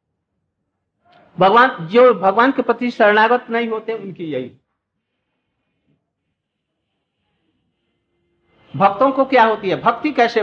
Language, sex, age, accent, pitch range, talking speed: Hindi, male, 60-79, native, 180-235 Hz, 100 wpm